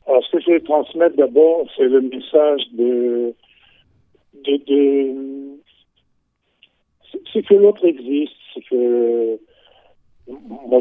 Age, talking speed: 50-69, 110 wpm